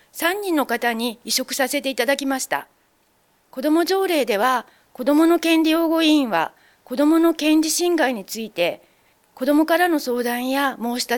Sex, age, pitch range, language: female, 40-59, 255-310 Hz, Japanese